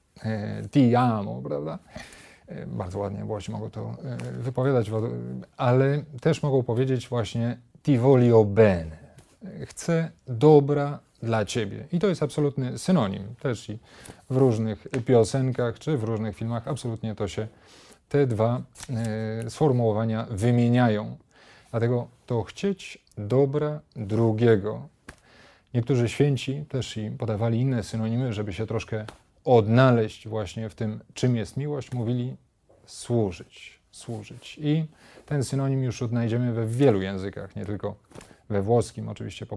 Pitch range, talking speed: 110-130 Hz, 120 wpm